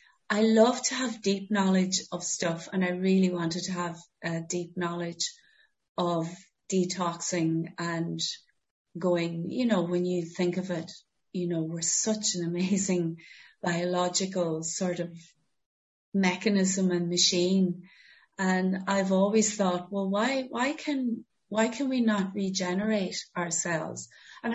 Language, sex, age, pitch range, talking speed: English, female, 30-49, 175-205 Hz, 135 wpm